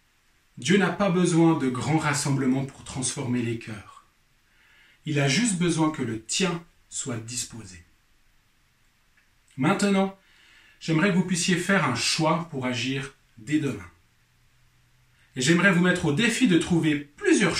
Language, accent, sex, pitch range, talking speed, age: French, French, male, 120-175 Hz, 140 wpm, 40-59